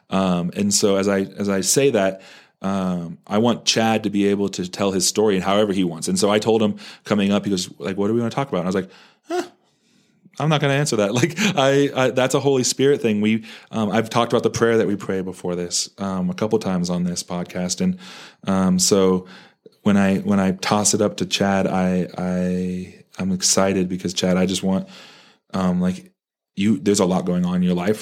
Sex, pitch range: male, 90-100 Hz